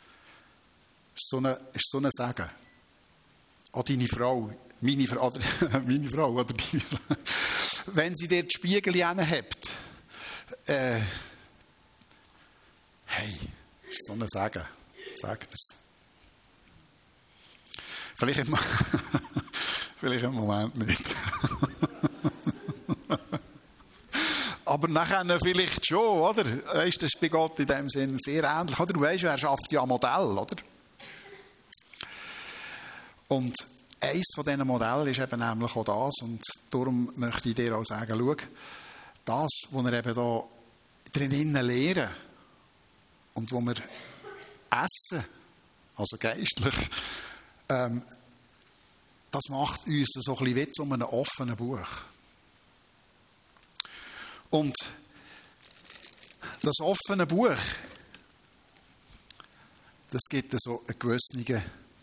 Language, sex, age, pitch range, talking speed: German, male, 60-79, 120-145 Hz, 110 wpm